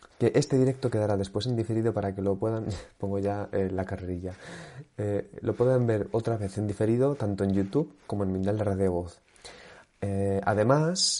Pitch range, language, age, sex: 100-115 Hz, Spanish, 30-49, male